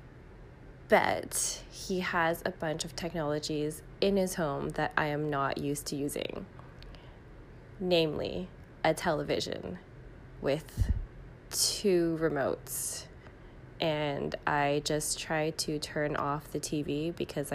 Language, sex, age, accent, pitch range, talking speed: English, female, 20-39, American, 145-175 Hz, 115 wpm